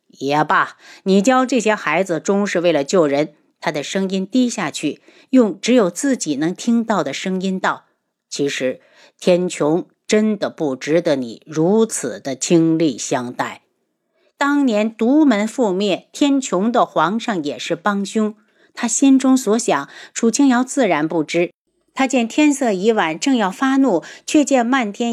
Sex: female